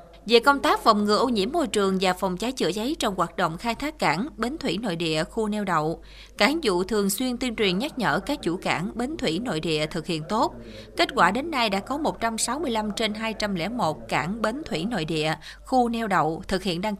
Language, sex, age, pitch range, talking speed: Vietnamese, female, 20-39, 175-230 Hz, 230 wpm